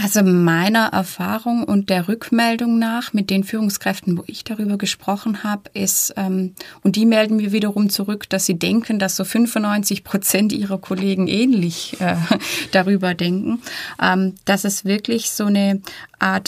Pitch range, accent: 190-225 Hz, German